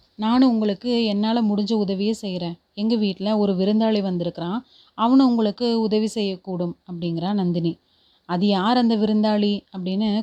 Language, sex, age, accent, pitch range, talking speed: Tamil, female, 30-49, native, 185-225 Hz, 130 wpm